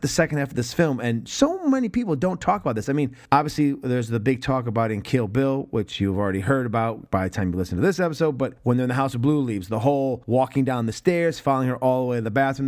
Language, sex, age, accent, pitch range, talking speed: English, male, 30-49, American, 115-150 Hz, 290 wpm